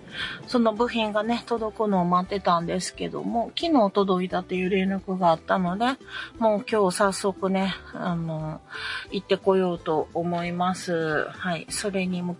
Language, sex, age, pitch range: Japanese, female, 40-59, 175-235 Hz